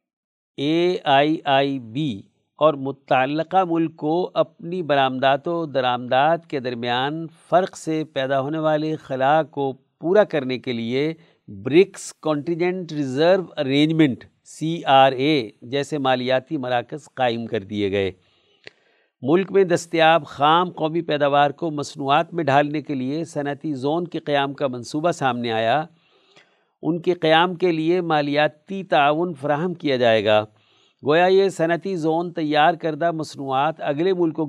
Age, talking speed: 50-69, 135 wpm